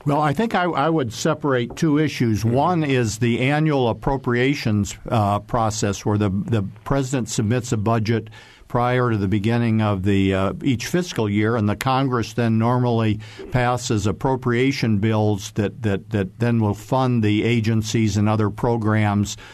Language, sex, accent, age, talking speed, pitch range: English, male, American, 50-69, 160 wpm, 105-125 Hz